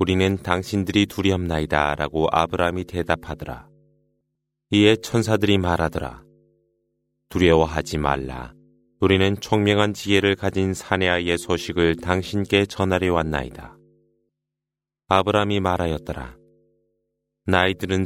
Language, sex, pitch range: Korean, male, 85-100 Hz